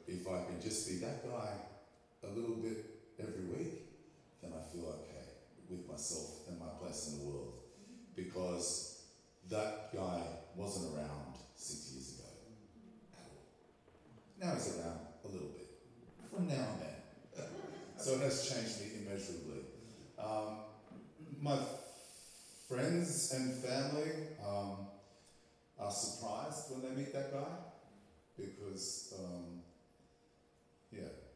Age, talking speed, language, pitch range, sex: 30-49, 125 wpm, English, 90-120 Hz, male